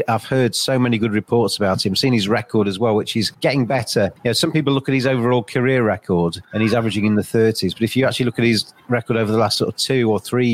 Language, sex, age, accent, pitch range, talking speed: English, male, 30-49, British, 110-130 Hz, 280 wpm